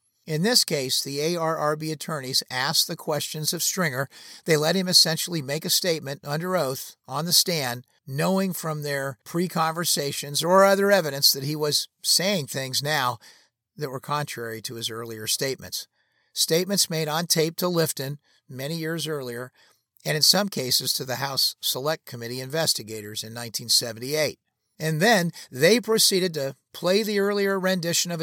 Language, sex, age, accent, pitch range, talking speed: English, male, 50-69, American, 125-170 Hz, 155 wpm